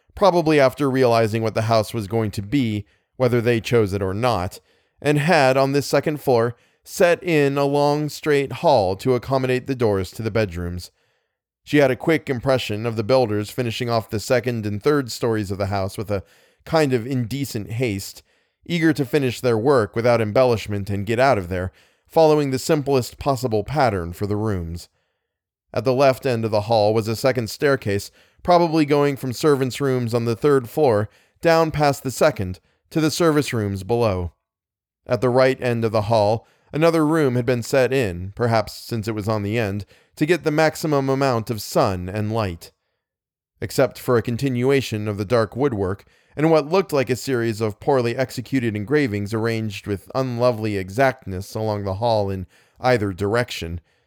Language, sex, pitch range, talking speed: English, male, 105-140 Hz, 185 wpm